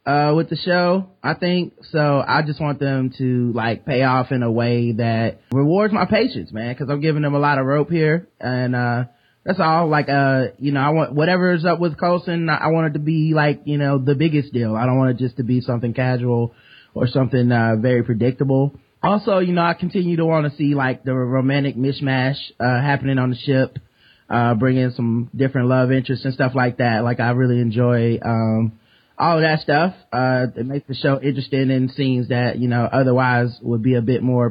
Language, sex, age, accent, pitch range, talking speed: English, male, 20-39, American, 125-150 Hz, 220 wpm